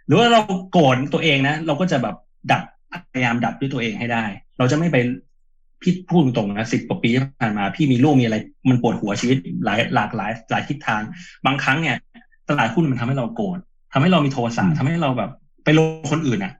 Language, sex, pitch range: Thai, male, 120-175 Hz